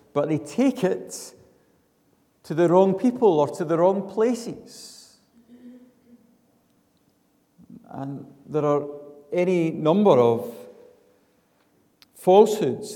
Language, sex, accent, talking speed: English, male, British, 95 wpm